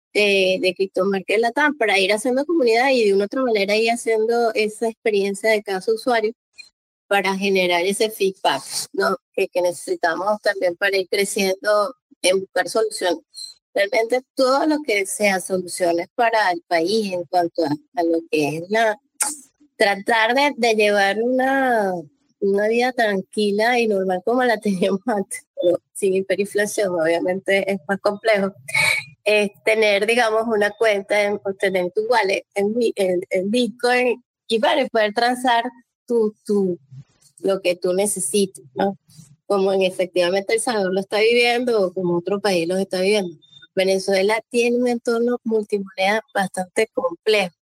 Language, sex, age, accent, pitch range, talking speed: Spanish, female, 20-39, American, 190-230 Hz, 150 wpm